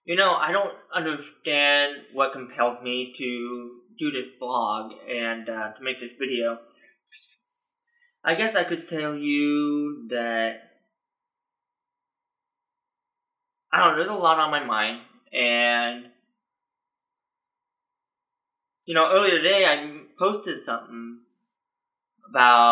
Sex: male